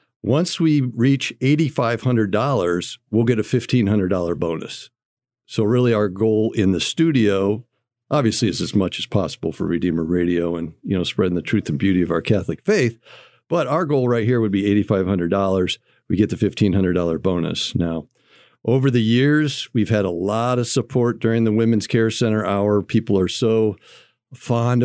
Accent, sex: American, male